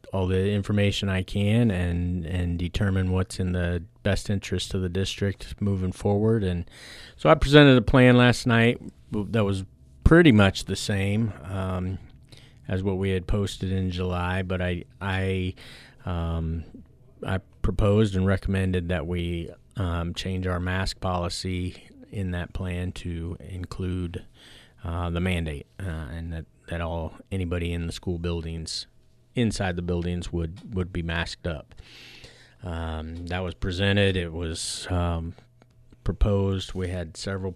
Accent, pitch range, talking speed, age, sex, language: American, 90-100 Hz, 145 wpm, 40-59, male, English